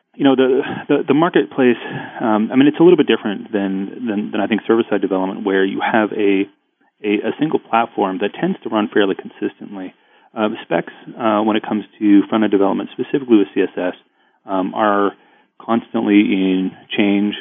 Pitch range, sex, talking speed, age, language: 95-110 Hz, male, 185 wpm, 30-49, English